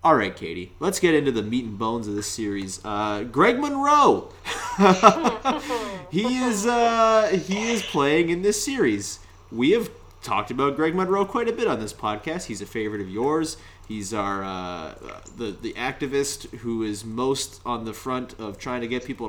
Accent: American